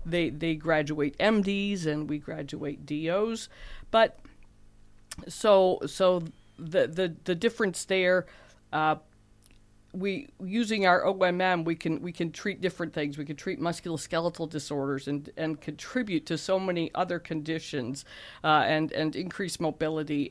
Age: 50-69